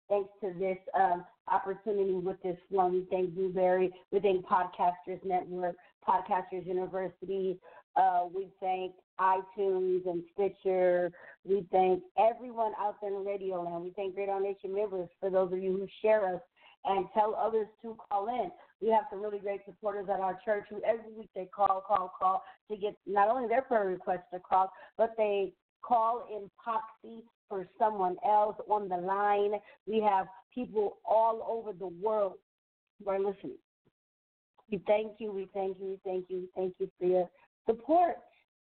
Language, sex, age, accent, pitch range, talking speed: English, female, 40-59, American, 185-215 Hz, 170 wpm